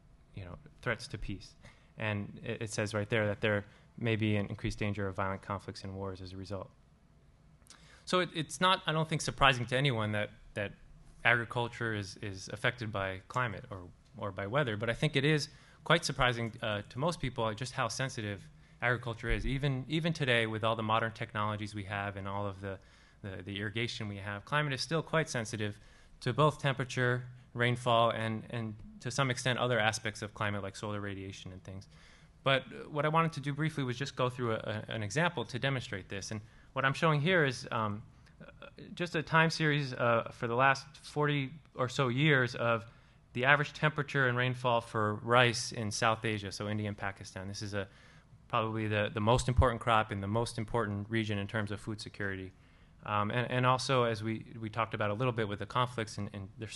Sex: male